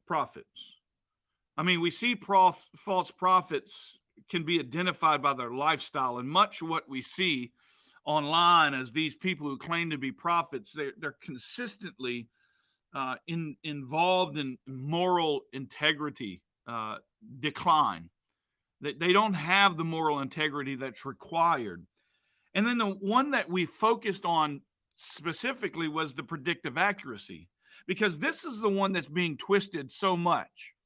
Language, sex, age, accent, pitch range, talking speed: English, male, 50-69, American, 155-200 Hz, 140 wpm